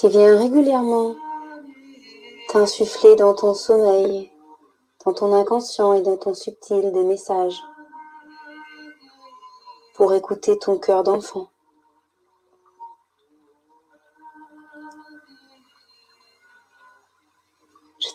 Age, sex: 30-49, female